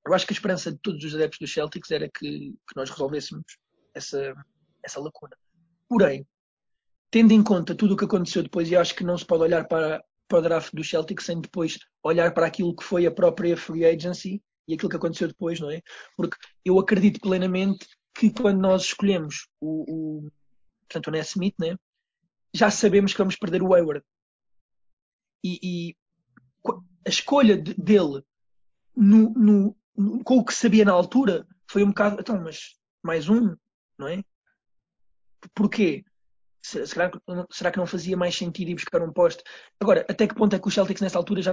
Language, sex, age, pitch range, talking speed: Portuguese, male, 20-39, 155-200 Hz, 175 wpm